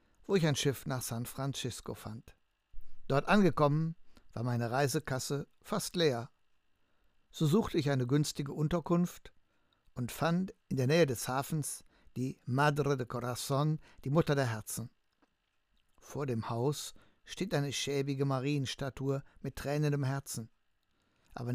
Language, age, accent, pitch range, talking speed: German, 60-79, German, 125-155 Hz, 130 wpm